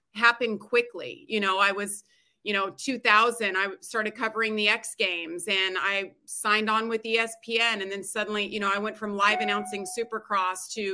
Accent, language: American, English